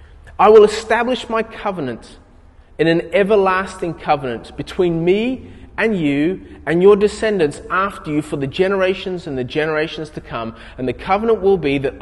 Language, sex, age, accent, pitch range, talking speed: English, male, 30-49, Australian, 125-195 Hz, 160 wpm